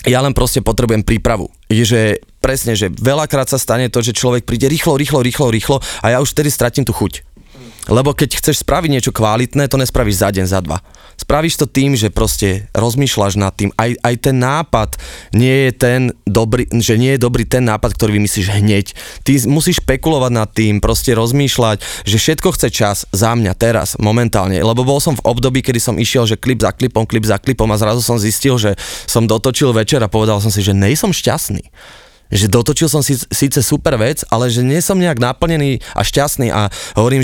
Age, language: 20-39, Slovak